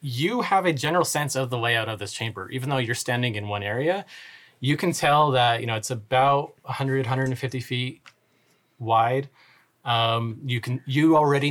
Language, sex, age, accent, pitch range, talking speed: English, male, 30-49, American, 110-130 Hz, 180 wpm